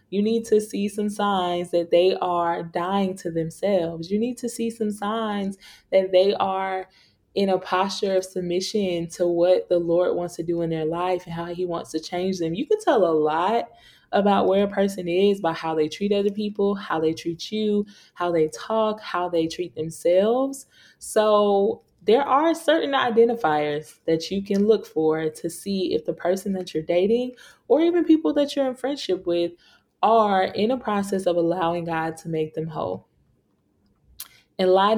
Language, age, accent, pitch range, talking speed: English, 20-39, American, 170-210 Hz, 185 wpm